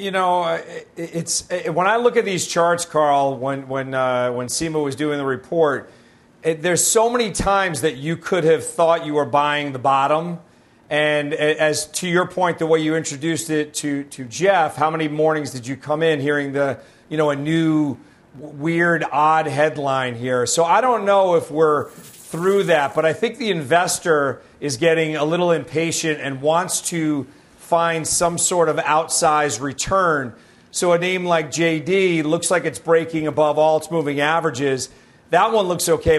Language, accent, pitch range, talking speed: English, American, 150-180 Hz, 180 wpm